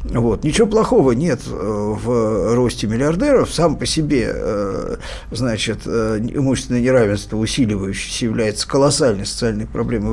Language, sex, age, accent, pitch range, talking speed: Russian, male, 50-69, native, 120-160 Hz, 100 wpm